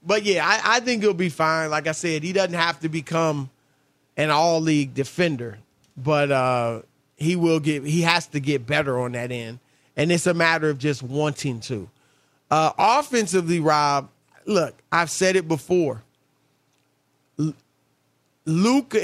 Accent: American